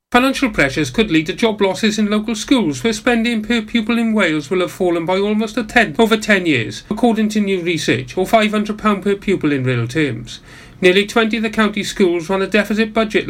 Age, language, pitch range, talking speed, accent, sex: 40-59, English, 165-215 Hz, 210 wpm, British, male